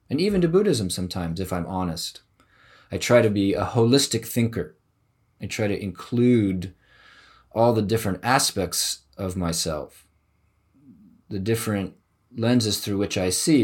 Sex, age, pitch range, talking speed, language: male, 20-39, 95-115 Hz, 140 wpm, English